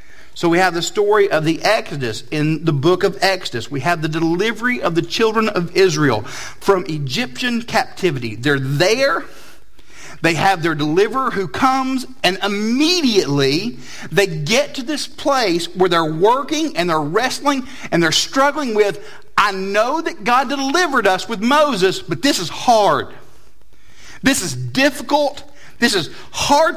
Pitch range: 160-265 Hz